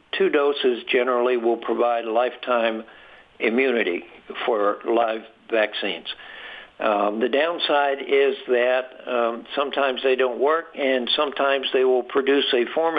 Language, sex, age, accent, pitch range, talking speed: English, male, 60-79, American, 120-155 Hz, 125 wpm